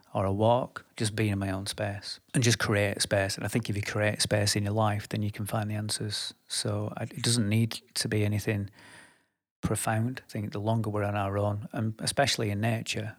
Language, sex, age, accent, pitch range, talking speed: English, male, 40-59, British, 105-115 Hz, 225 wpm